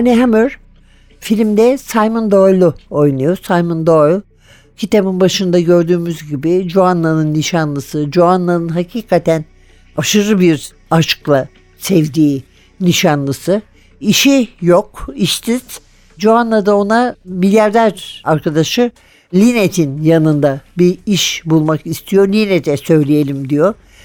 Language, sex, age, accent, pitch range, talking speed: Turkish, male, 60-79, native, 165-230 Hz, 95 wpm